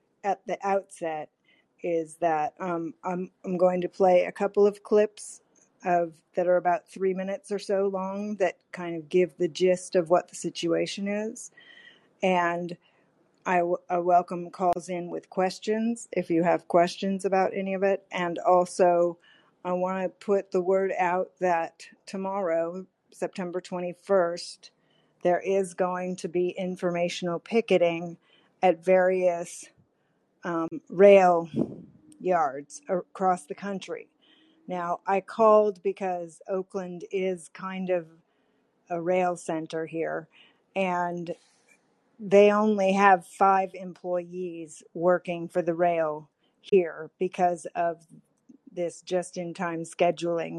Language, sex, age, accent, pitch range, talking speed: English, female, 50-69, American, 175-195 Hz, 130 wpm